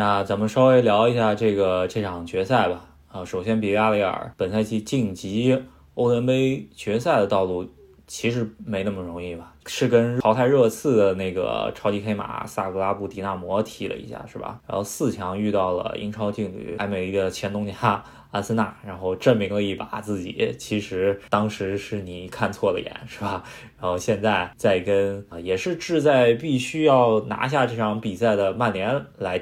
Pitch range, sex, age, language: 95-110 Hz, male, 20-39, Chinese